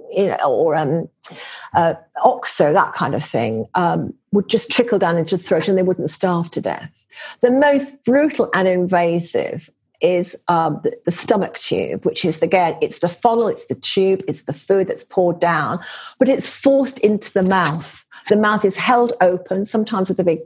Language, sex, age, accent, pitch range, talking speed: English, female, 50-69, British, 180-235 Hz, 190 wpm